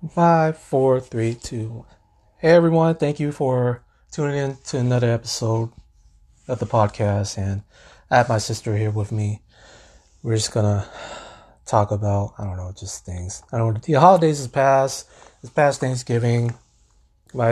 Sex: male